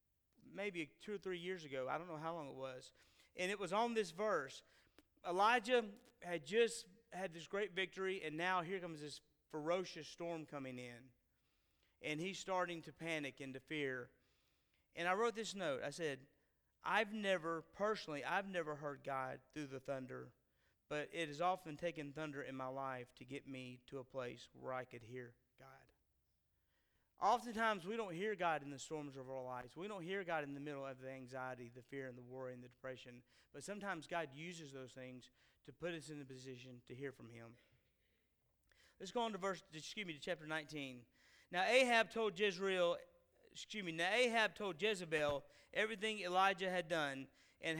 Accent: American